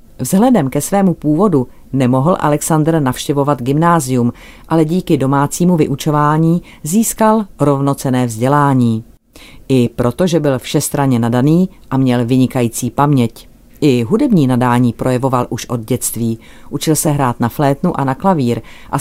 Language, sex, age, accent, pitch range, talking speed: Czech, female, 40-59, native, 125-160 Hz, 125 wpm